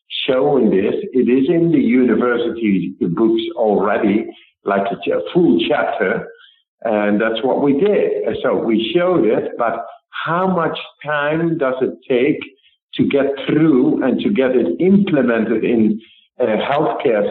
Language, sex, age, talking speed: English, male, 50-69, 140 wpm